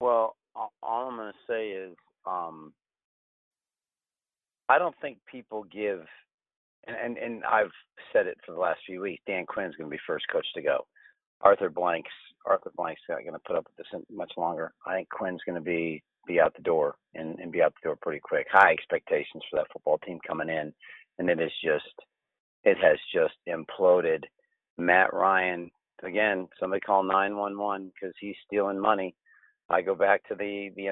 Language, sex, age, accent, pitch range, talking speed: English, male, 40-59, American, 95-120 Hz, 185 wpm